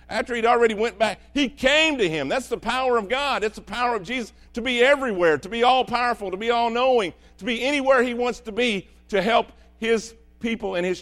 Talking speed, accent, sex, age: 225 wpm, American, male, 50-69